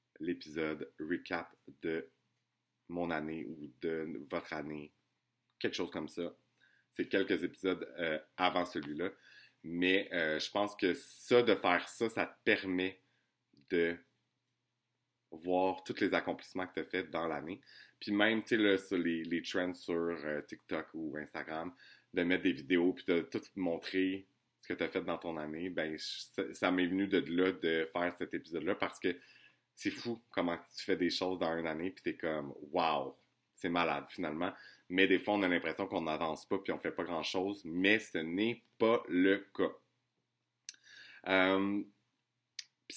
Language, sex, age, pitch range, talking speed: French, male, 30-49, 85-100 Hz, 175 wpm